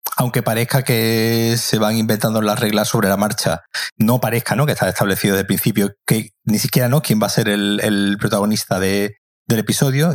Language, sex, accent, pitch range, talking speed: Spanish, male, Spanish, 100-125 Hz, 205 wpm